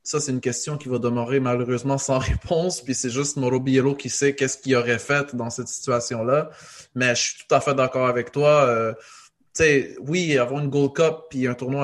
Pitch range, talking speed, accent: 125-140 Hz, 225 wpm, Canadian